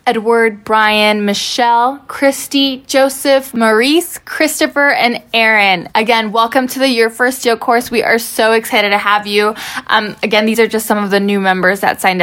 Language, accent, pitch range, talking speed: English, American, 205-250 Hz, 175 wpm